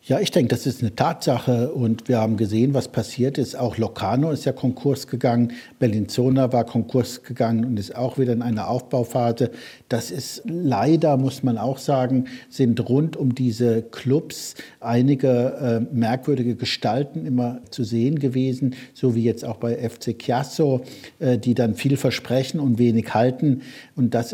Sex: male